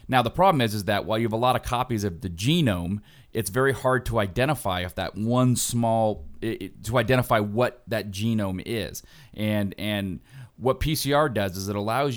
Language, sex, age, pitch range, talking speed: English, male, 30-49, 95-120 Hz, 195 wpm